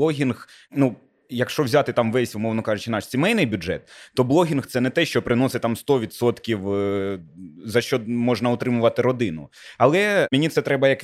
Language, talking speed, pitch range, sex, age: Ukrainian, 170 wpm, 115-140 Hz, male, 20-39